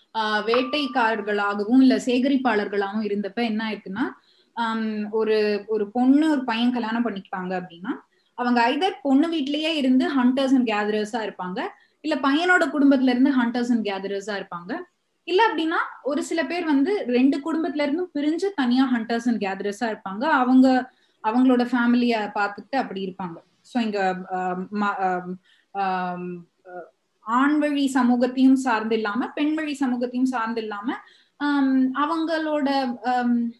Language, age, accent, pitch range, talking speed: Tamil, 20-39, native, 215-285 Hz, 115 wpm